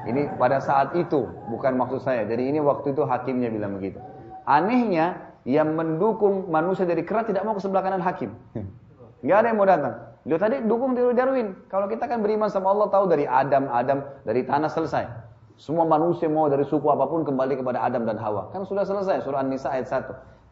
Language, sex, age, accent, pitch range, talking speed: Indonesian, male, 30-49, native, 115-165 Hz, 195 wpm